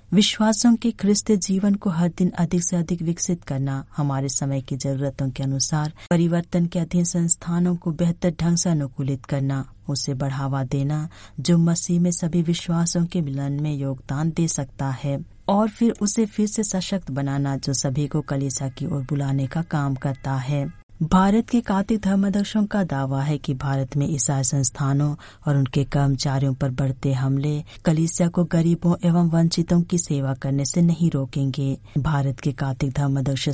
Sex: female